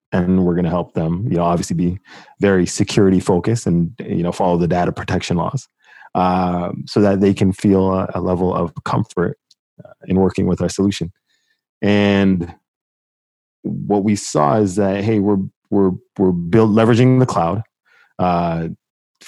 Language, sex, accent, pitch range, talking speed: English, male, American, 90-105 Hz, 160 wpm